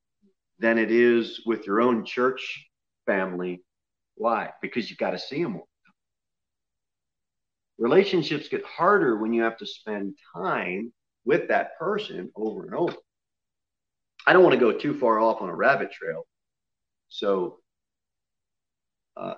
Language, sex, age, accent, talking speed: English, male, 40-59, American, 135 wpm